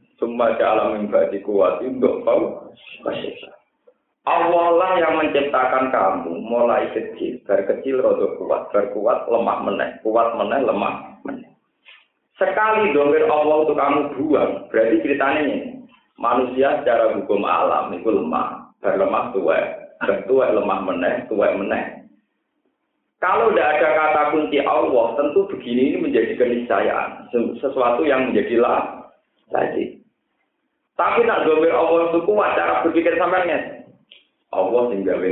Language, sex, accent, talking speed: Indonesian, male, native, 120 wpm